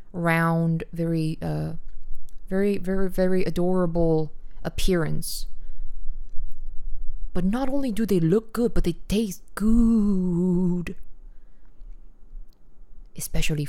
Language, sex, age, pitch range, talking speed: English, female, 20-39, 150-170 Hz, 90 wpm